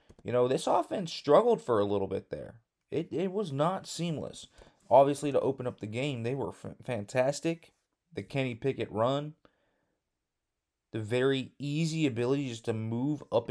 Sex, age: male, 20-39